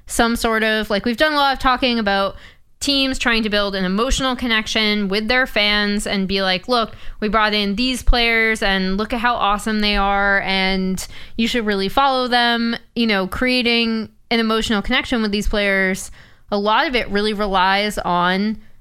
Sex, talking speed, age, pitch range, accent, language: female, 190 wpm, 20-39, 195-235 Hz, American, English